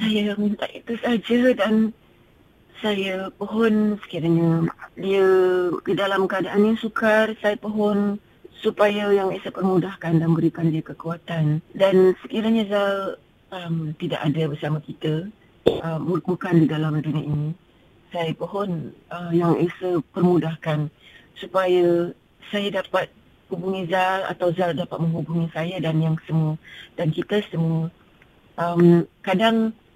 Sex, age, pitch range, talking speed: female, 30-49, 170-195 Hz, 125 wpm